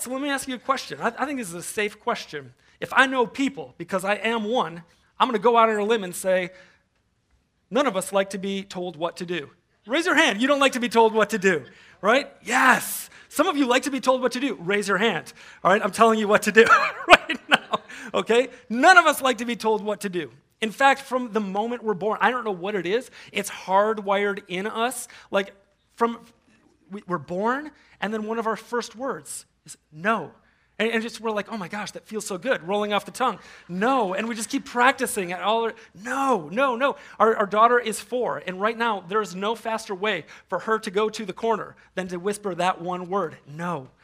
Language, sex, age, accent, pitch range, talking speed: English, male, 30-49, American, 190-240 Hz, 240 wpm